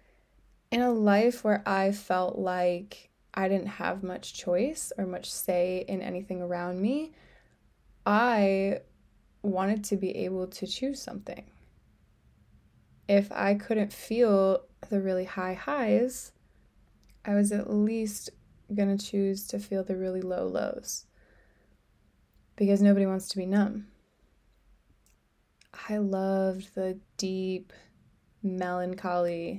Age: 20-39